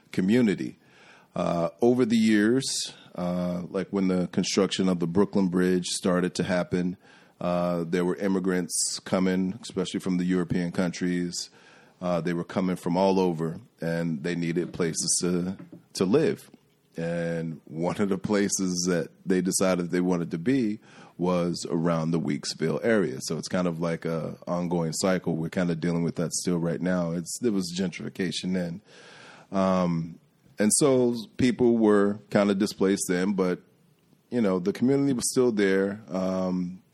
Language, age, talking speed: English, 30-49, 160 wpm